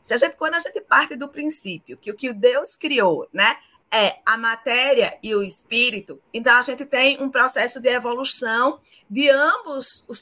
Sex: female